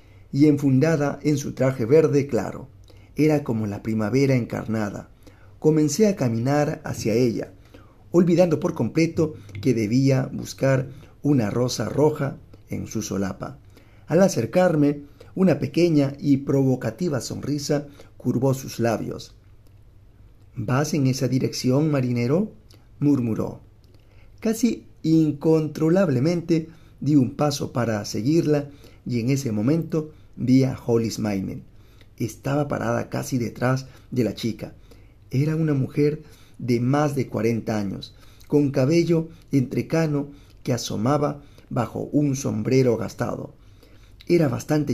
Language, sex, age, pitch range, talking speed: Spanish, male, 40-59, 110-145 Hz, 110 wpm